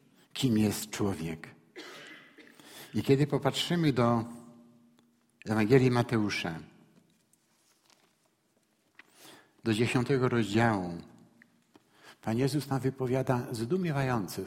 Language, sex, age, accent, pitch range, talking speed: Polish, male, 60-79, native, 115-145 Hz, 70 wpm